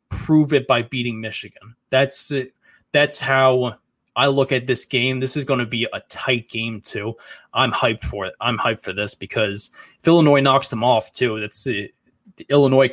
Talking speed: 190 wpm